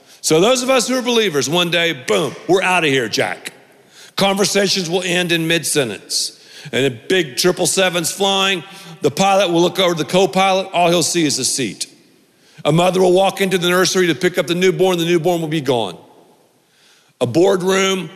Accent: American